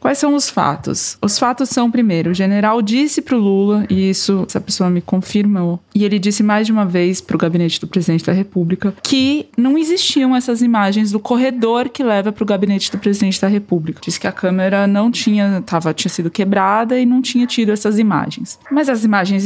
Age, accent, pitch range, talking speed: 20-39, Brazilian, 195-260 Hz, 205 wpm